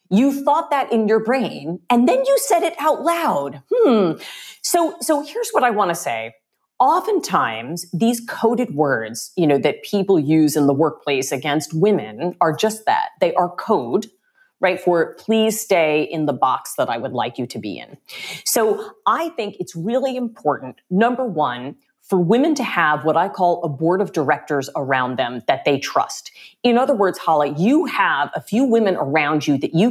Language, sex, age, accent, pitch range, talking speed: English, female, 40-59, American, 155-235 Hz, 190 wpm